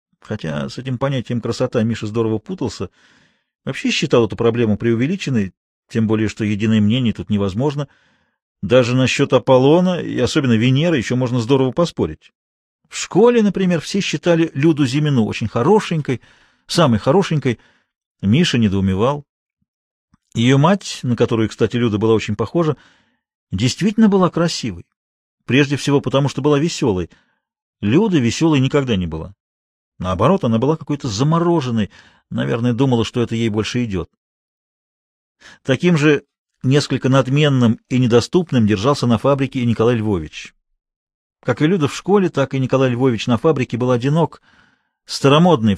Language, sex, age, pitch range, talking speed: Russian, male, 40-59, 115-145 Hz, 135 wpm